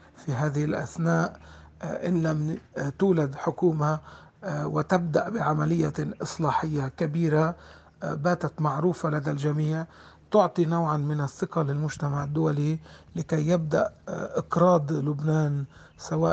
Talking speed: 95 wpm